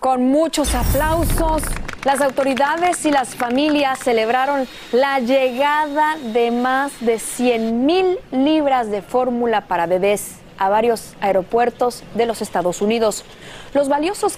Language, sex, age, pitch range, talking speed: Spanish, female, 30-49, 210-270 Hz, 125 wpm